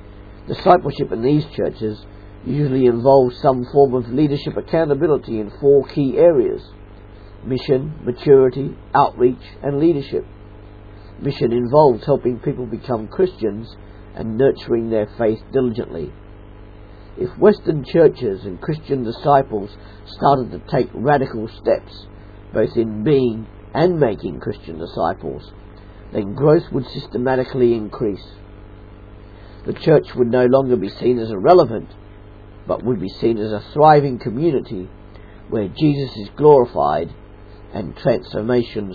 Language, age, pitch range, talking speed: English, 50-69, 105-135 Hz, 120 wpm